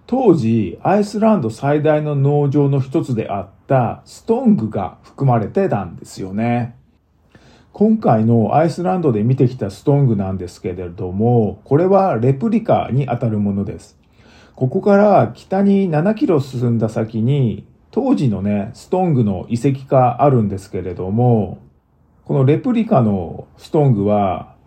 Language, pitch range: Japanese, 105-155 Hz